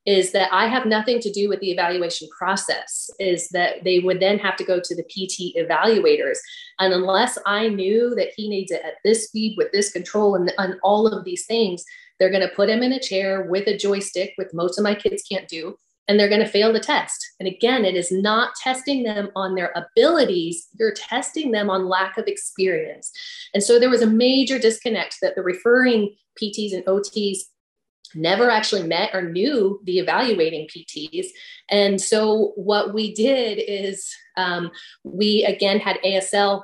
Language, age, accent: English, 30-49, American